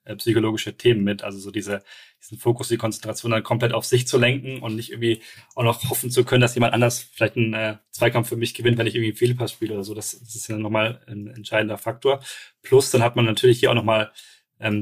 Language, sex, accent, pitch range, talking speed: German, male, German, 110-125 Hz, 240 wpm